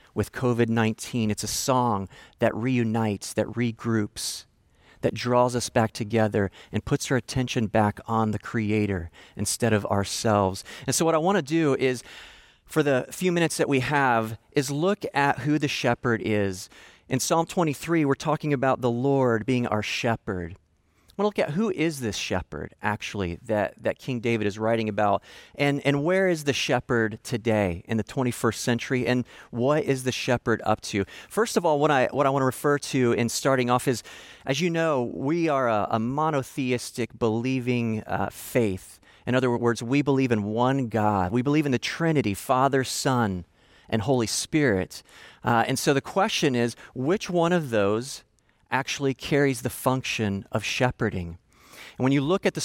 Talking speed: 180 wpm